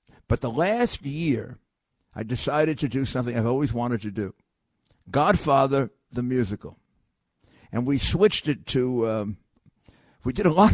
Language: English